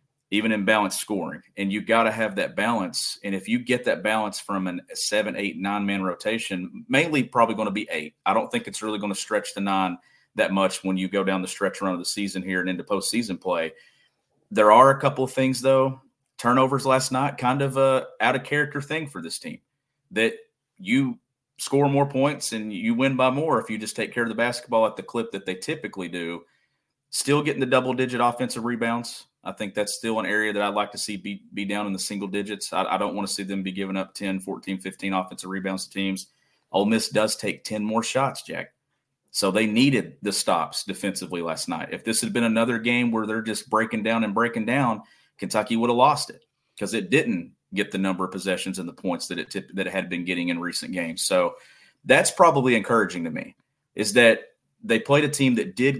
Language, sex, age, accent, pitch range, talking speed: English, male, 40-59, American, 95-130 Hz, 225 wpm